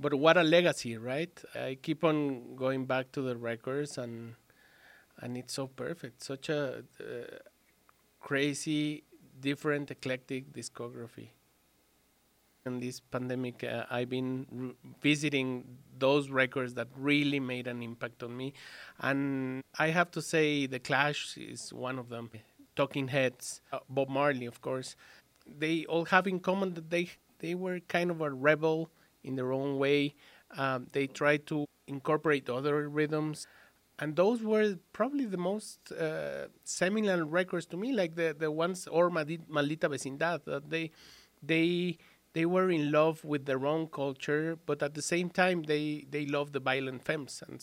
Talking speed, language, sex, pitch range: 155 wpm, English, male, 130-165 Hz